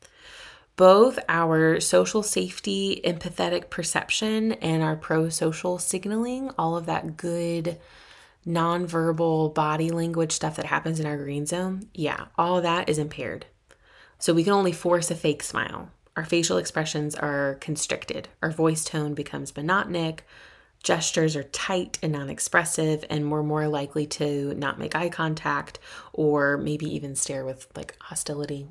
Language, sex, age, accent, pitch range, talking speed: English, female, 20-39, American, 150-175 Hz, 145 wpm